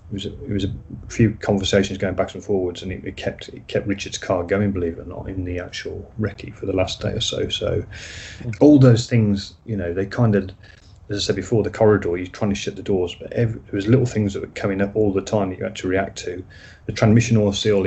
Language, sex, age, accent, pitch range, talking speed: English, male, 30-49, British, 95-105 Hz, 260 wpm